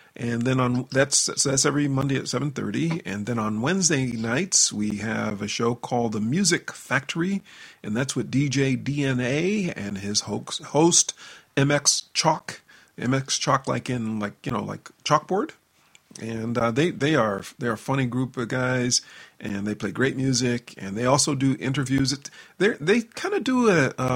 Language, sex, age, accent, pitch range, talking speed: English, male, 40-59, American, 120-145 Hz, 180 wpm